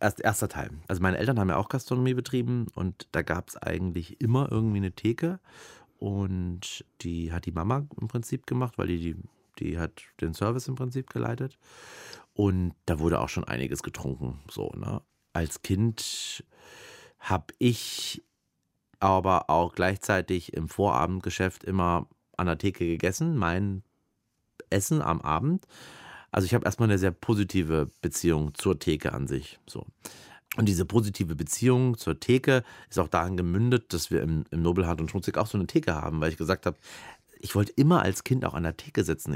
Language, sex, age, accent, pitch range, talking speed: German, male, 40-59, German, 85-120 Hz, 170 wpm